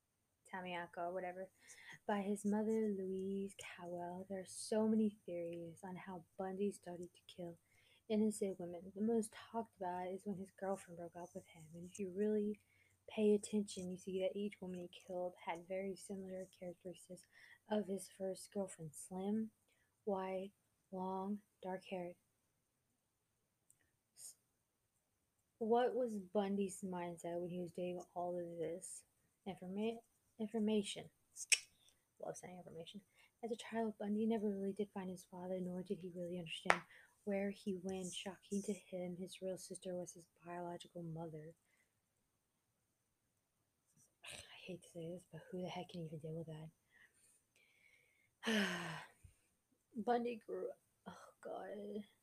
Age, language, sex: 20-39, English, female